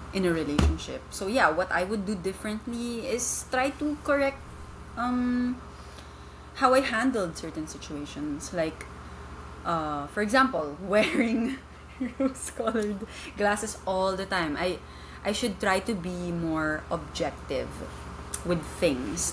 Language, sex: English, female